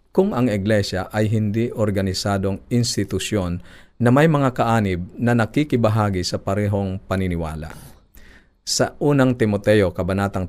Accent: native